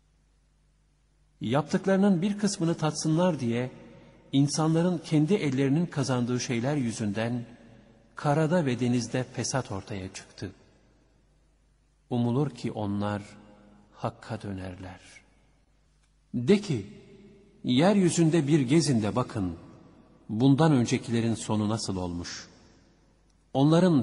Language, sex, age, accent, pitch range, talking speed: Turkish, male, 50-69, native, 105-145 Hz, 85 wpm